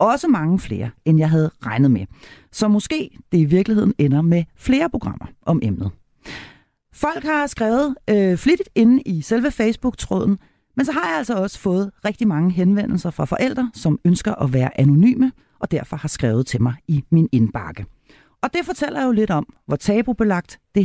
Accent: native